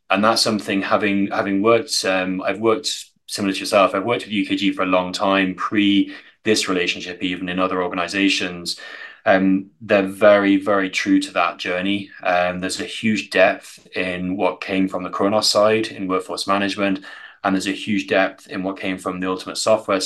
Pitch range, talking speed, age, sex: 95-105 Hz, 185 wpm, 30-49, male